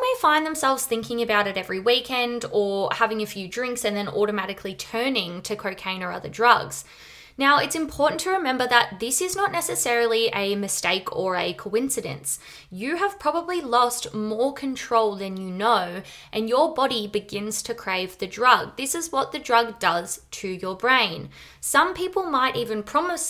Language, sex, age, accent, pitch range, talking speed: English, female, 20-39, Australian, 195-255 Hz, 175 wpm